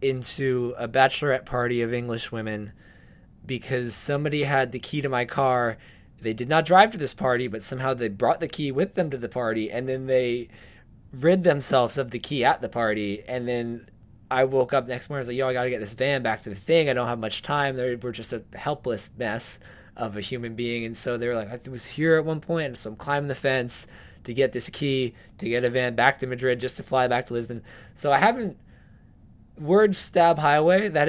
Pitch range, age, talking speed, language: 115-140 Hz, 20-39, 230 wpm, English